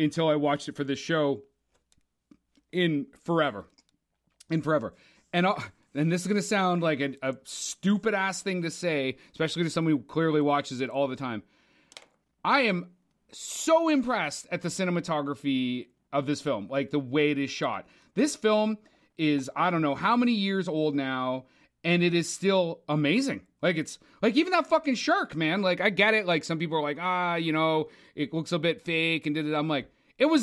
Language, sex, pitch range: English, male, 145-195 Hz